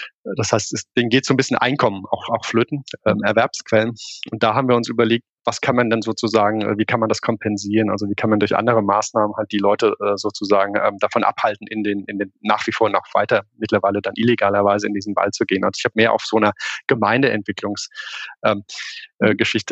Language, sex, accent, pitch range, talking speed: German, male, German, 105-130 Hz, 210 wpm